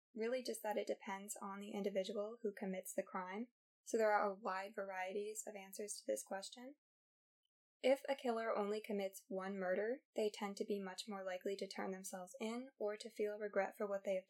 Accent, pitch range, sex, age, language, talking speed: American, 195-215 Hz, female, 10-29, English, 205 wpm